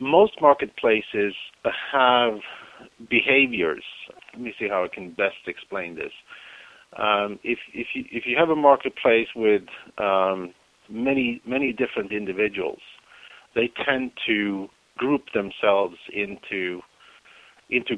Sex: male